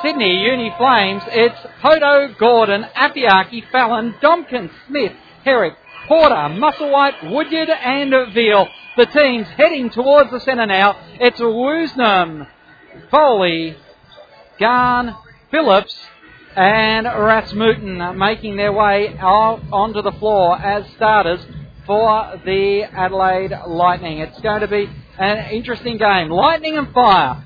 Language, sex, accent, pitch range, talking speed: English, male, Australian, 200-275 Hz, 115 wpm